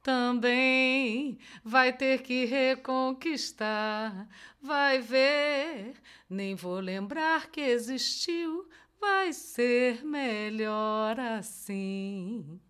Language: Portuguese